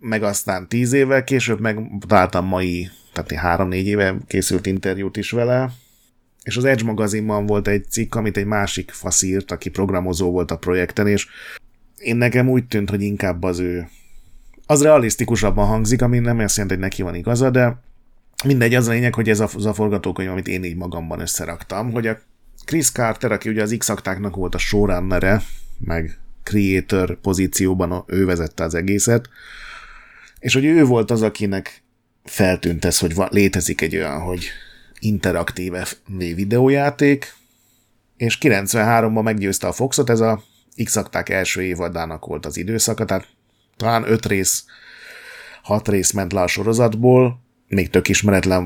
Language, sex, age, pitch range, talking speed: Hungarian, male, 30-49, 90-115 Hz, 155 wpm